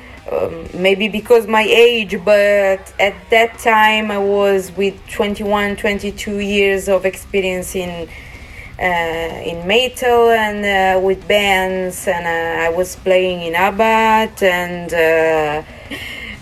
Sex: female